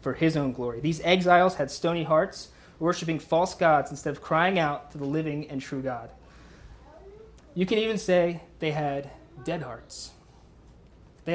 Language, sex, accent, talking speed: English, male, American, 165 wpm